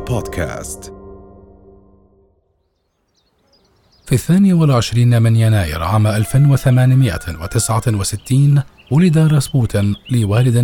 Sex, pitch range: male, 100-130 Hz